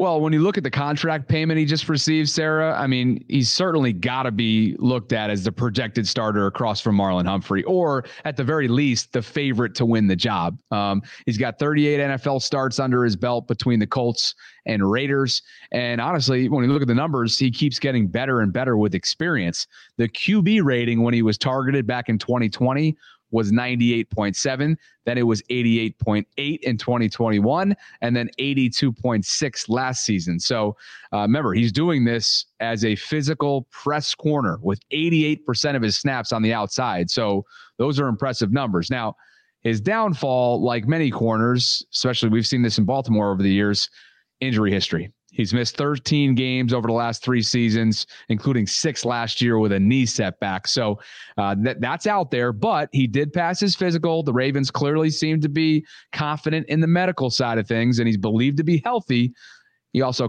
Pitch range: 115-145 Hz